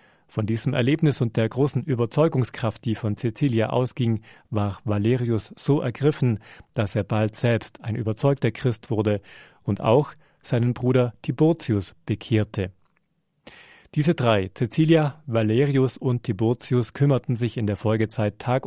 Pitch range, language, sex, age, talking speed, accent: 110-130 Hz, German, male, 40-59, 130 wpm, German